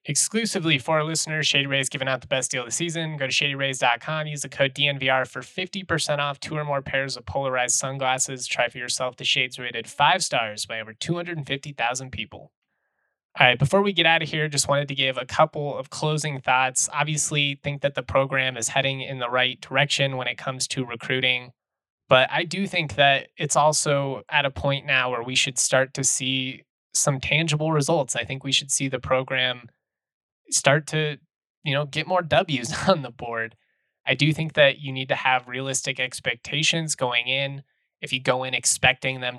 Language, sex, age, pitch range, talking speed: English, male, 20-39, 125-145 Hz, 200 wpm